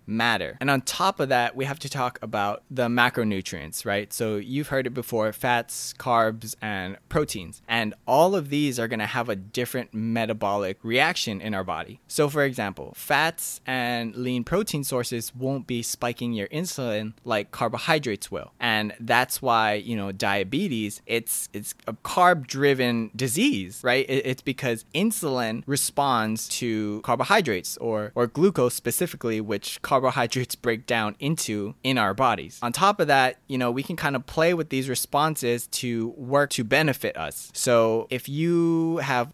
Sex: male